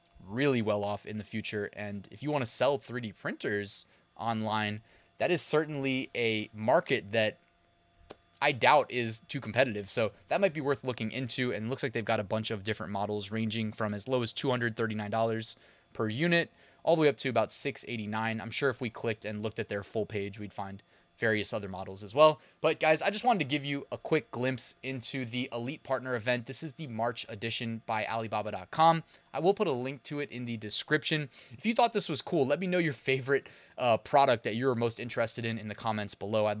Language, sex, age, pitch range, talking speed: English, male, 20-39, 110-140 Hz, 220 wpm